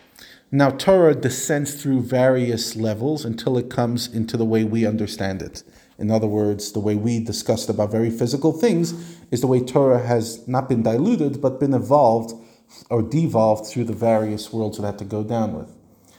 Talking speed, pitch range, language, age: 180 wpm, 115-140 Hz, English, 40-59